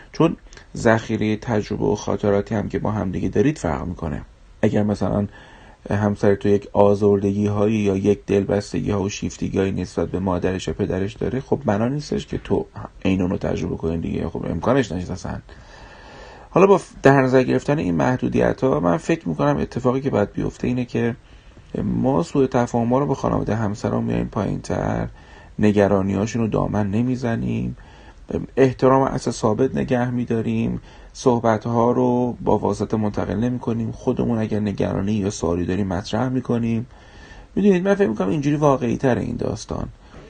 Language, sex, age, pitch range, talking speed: Persian, male, 30-49, 100-125 Hz, 160 wpm